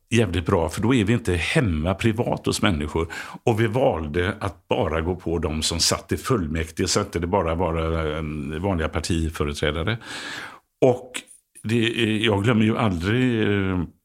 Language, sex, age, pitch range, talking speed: English, male, 60-79, 85-110 Hz, 155 wpm